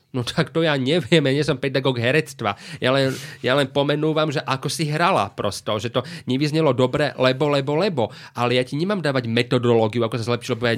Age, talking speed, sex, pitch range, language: 30-49, 200 wpm, male, 125-155 Hz, Slovak